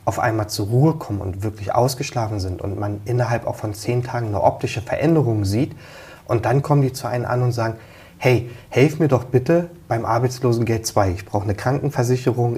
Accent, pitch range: German, 105-130 Hz